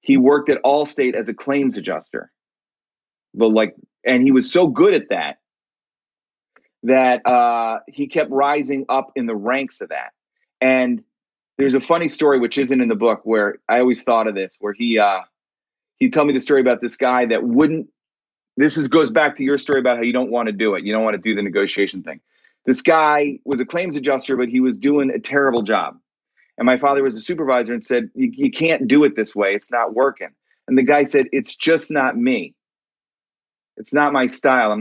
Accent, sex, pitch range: American, male, 125-185 Hz